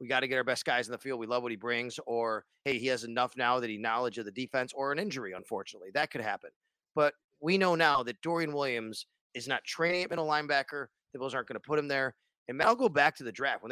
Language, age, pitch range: English, 30-49, 125-170 Hz